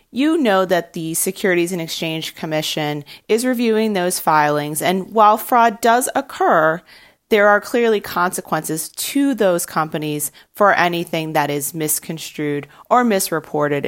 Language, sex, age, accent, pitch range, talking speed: English, female, 30-49, American, 155-200 Hz, 135 wpm